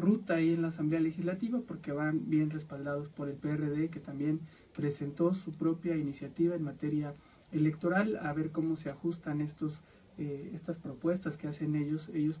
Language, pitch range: English, 150-170 Hz